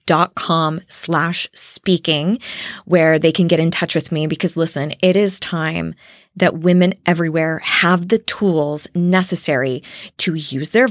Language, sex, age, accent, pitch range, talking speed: English, female, 20-39, American, 165-220 Hz, 150 wpm